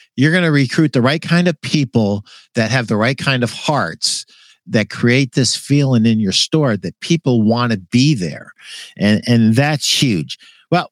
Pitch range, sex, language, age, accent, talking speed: 115-160 Hz, male, English, 50-69, American, 185 wpm